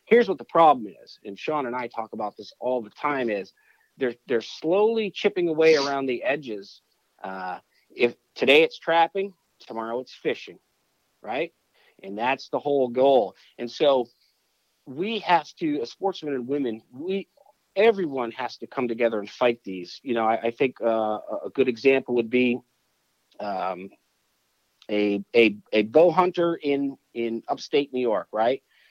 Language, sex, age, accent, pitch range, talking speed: English, male, 40-59, American, 115-145 Hz, 165 wpm